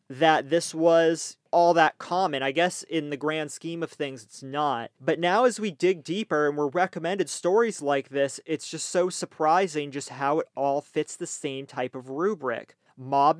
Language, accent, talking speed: English, American, 195 wpm